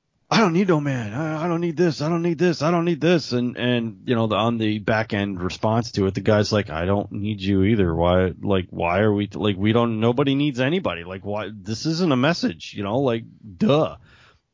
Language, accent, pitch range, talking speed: English, American, 105-145 Hz, 240 wpm